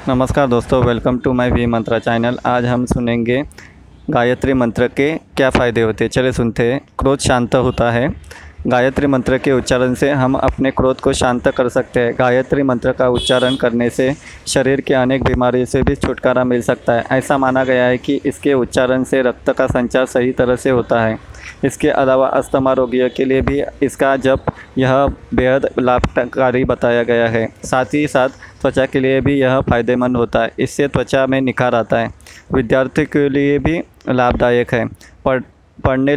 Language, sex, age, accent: English, male, 20-39, Indian